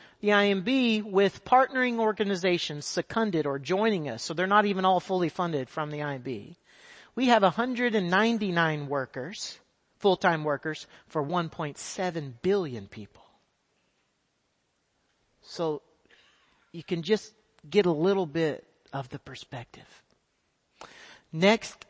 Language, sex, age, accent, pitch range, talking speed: English, male, 40-59, American, 150-200 Hz, 110 wpm